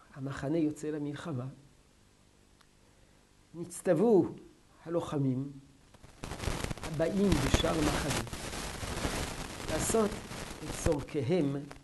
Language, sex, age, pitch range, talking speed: Hebrew, male, 60-79, 140-195 Hz, 55 wpm